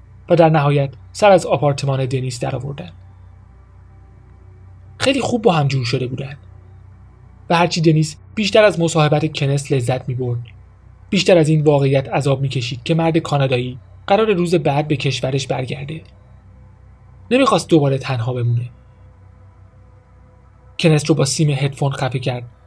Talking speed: 130 wpm